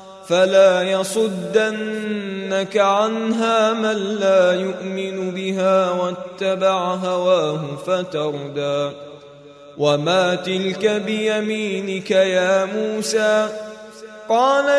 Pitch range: 190-225 Hz